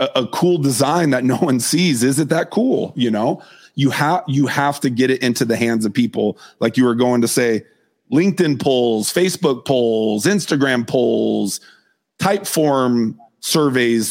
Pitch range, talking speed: 120-150 Hz, 170 wpm